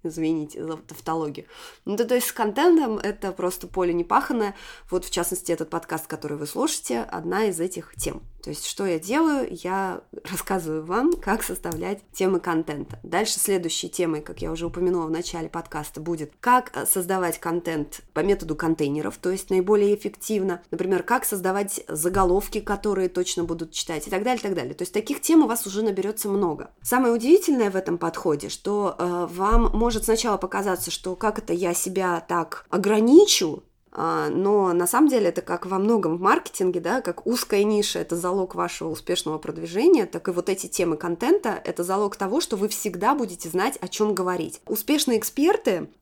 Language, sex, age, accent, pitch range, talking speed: Russian, female, 20-39, native, 175-230 Hz, 175 wpm